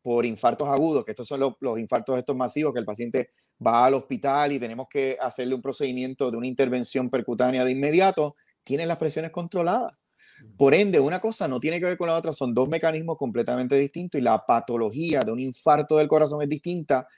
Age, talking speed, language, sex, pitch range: 30-49, 205 wpm, Spanish, male, 125-160 Hz